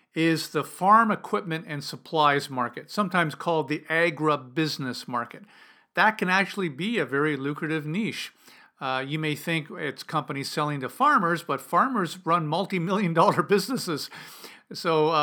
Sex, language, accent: male, English, American